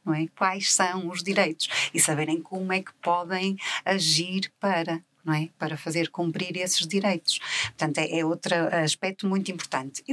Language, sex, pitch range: Portuguese, female, 155-190 Hz